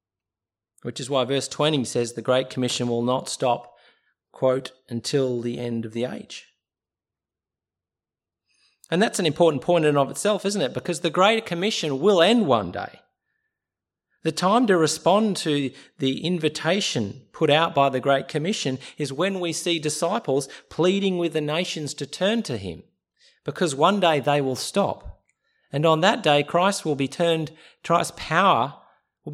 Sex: male